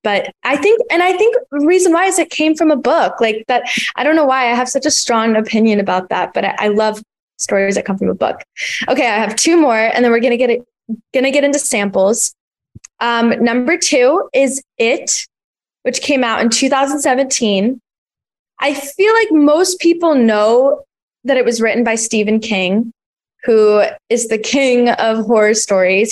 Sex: female